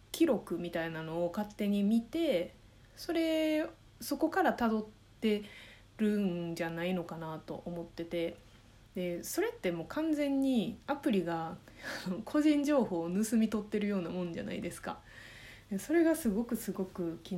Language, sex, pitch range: Japanese, female, 170-215 Hz